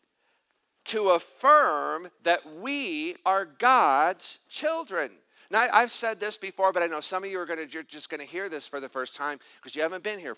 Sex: male